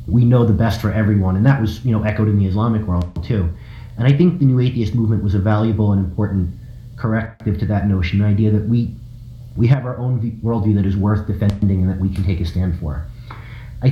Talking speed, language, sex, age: 235 wpm, English, male, 30-49